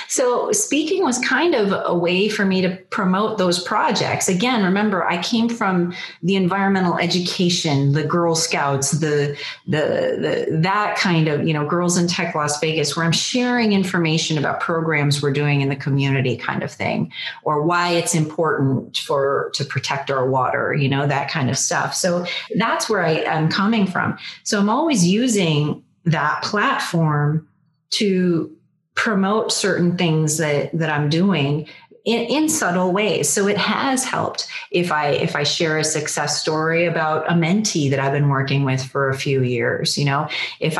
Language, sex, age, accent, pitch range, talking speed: English, female, 30-49, American, 150-195 Hz, 175 wpm